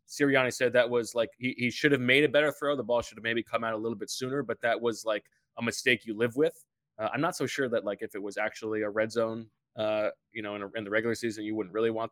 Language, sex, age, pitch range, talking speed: English, male, 20-39, 110-125 Hz, 295 wpm